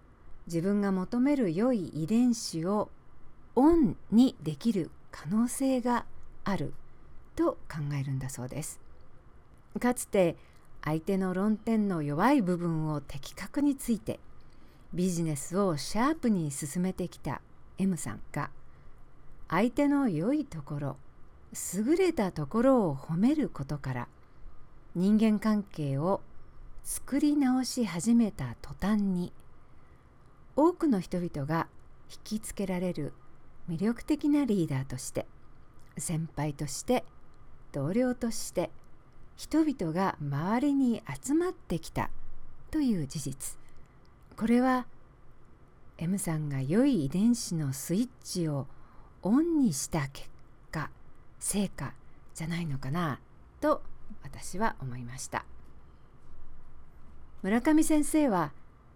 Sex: female